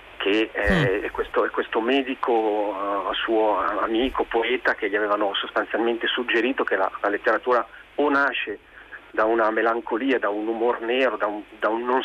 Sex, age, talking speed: male, 40-59, 165 wpm